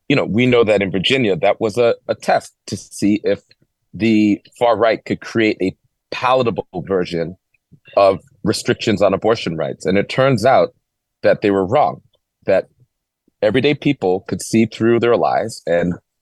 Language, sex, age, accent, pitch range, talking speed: English, male, 30-49, American, 95-115 Hz, 165 wpm